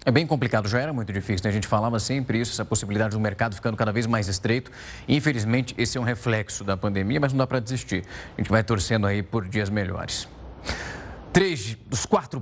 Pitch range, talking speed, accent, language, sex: 110-140 Hz, 220 wpm, Brazilian, Portuguese, male